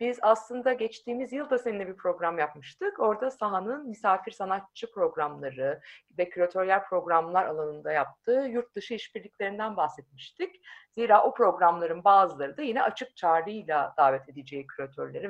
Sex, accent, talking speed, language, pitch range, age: female, native, 130 wpm, Turkish, 170-235 Hz, 50-69